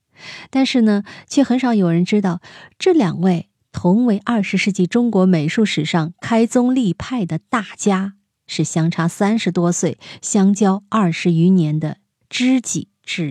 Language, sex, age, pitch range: Chinese, female, 20-39, 165-215 Hz